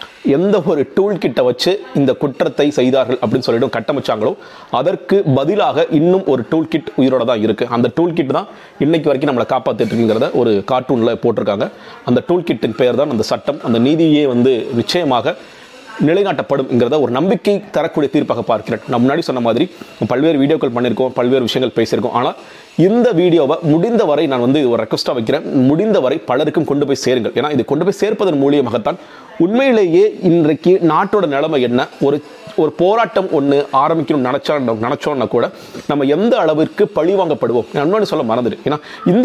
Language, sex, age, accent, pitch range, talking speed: Tamil, male, 30-49, native, 140-195 Hz, 150 wpm